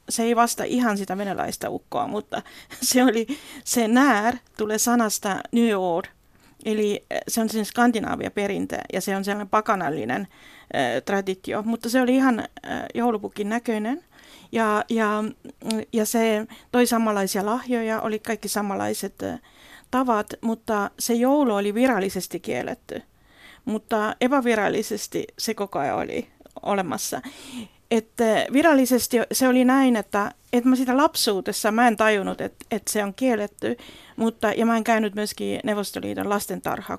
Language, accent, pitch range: Finnish, native, 205-245 Hz